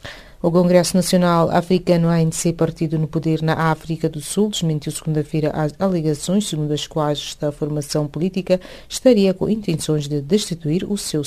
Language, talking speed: English, 155 wpm